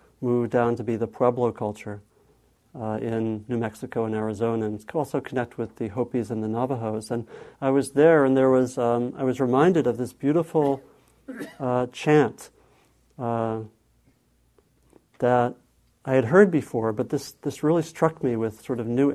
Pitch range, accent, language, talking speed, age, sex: 110-130 Hz, American, English, 170 wpm, 50-69, male